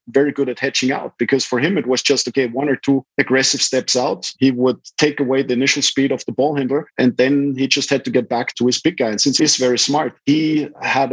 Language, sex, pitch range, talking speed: English, male, 115-135 Hz, 260 wpm